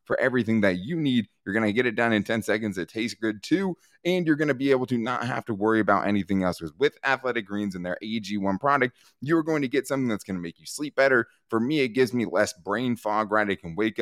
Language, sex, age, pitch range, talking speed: English, male, 20-39, 100-130 Hz, 275 wpm